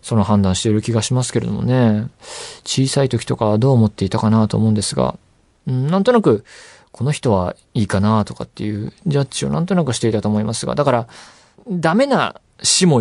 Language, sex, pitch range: Japanese, male, 100-135 Hz